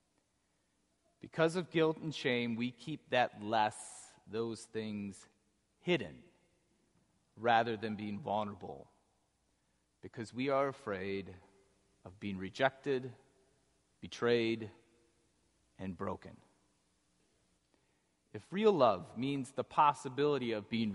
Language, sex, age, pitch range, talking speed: English, male, 30-49, 95-130 Hz, 95 wpm